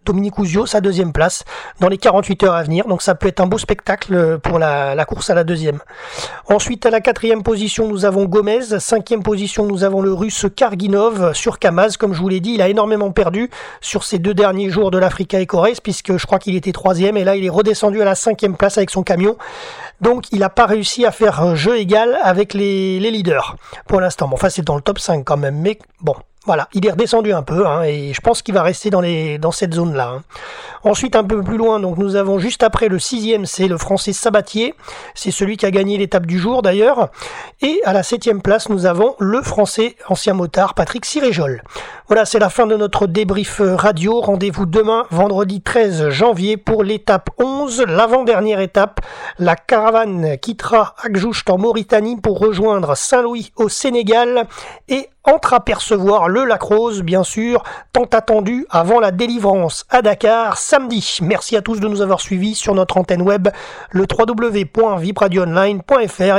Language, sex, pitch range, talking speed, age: French, male, 190-225 Hz, 195 wpm, 40-59